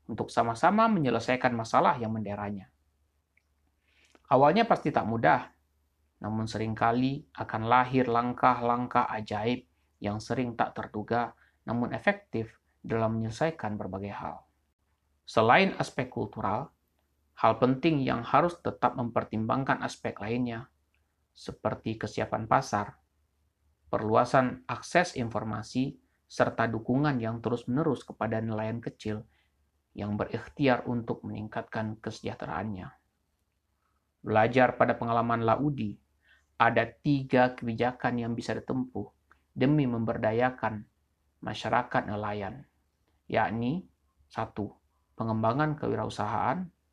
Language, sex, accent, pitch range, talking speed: Indonesian, male, native, 80-120 Hz, 95 wpm